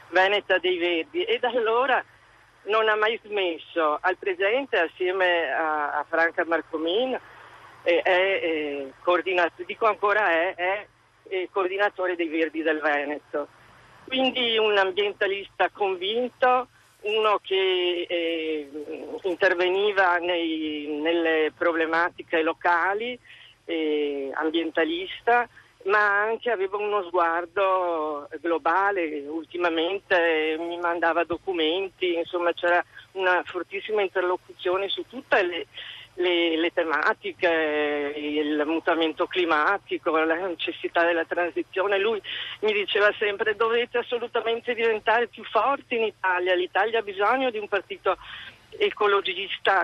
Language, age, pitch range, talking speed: Italian, 40-59, 165-215 Hz, 105 wpm